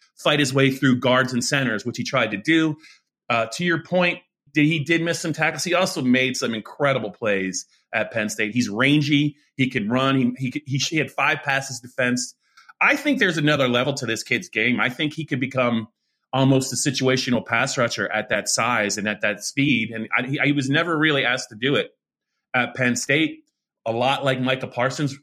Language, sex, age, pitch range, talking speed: English, male, 30-49, 115-145 Hz, 210 wpm